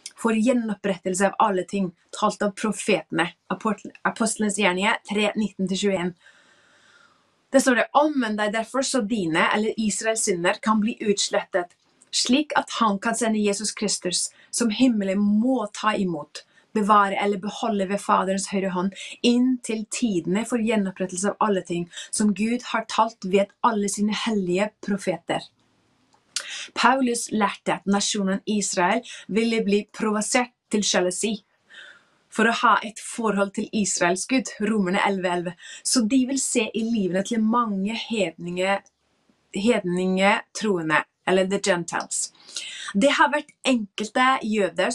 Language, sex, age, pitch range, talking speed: English, female, 30-49, 195-235 Hz, 130 wpm